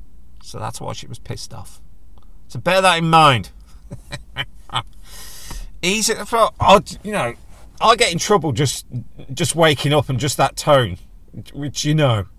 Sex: male